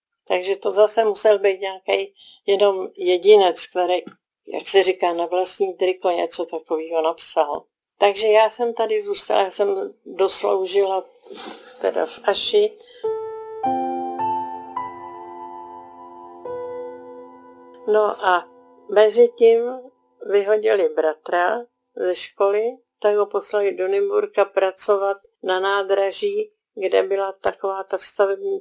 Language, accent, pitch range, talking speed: Czech, native, 180-245 Hz, 105 wpm